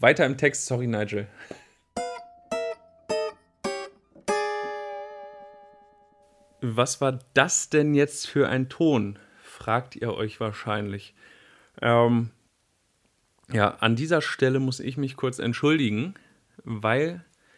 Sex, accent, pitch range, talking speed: male, German, 115-145 Hz, 95 wpm